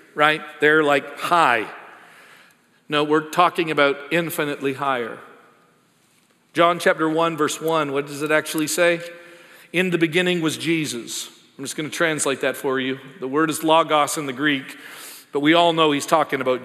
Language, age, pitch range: English, 50-69, 140-175 Hz